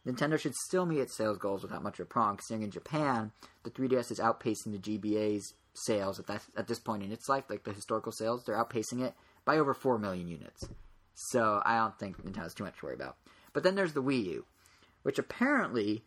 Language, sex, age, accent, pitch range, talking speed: English, male, 30-49, American, 105-130 Hz, 230 wpm